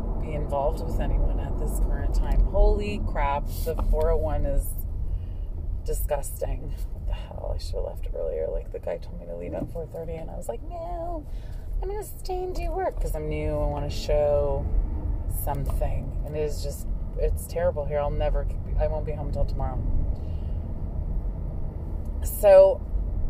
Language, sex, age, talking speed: English, female, 30-49, 175 wpm